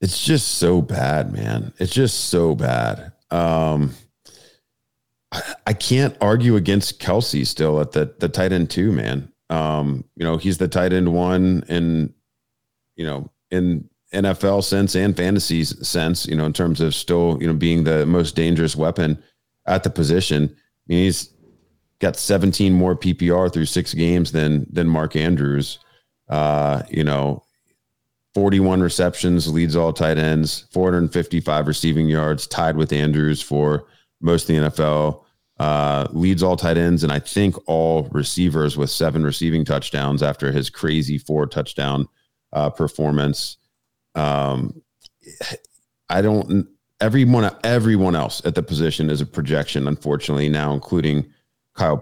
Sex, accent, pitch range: male, American, 75-90 Hz